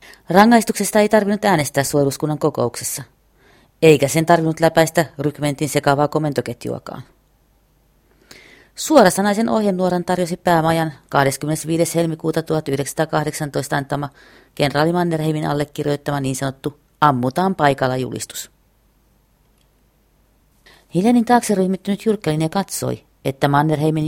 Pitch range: 150-210 Hz